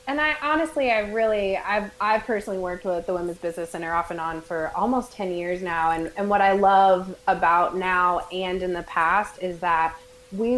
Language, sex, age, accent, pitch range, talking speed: English, female, 20-39, American, 175-205 Hz, 205 wpm